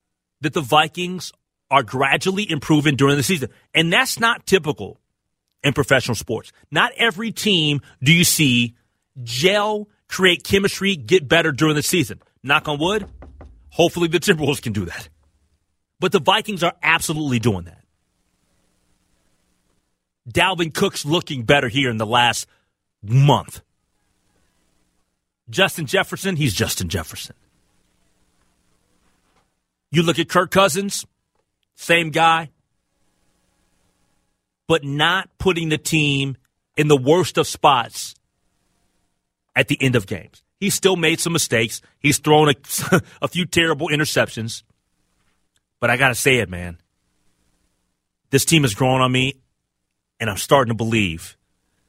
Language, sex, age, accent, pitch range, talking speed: English, male, 30-49, American, 100-165 Hz, 130 wpm